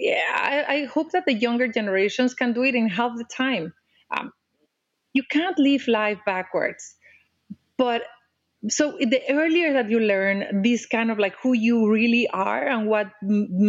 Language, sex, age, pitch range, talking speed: English, female, 30-49, 195-255 Hz, 170 wpm